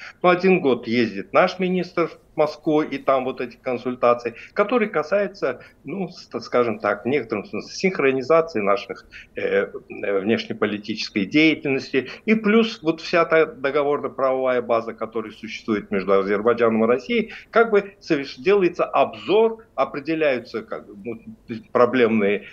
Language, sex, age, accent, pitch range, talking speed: Russian, male, 60-79, native, 120-190 Hz, 115 wpm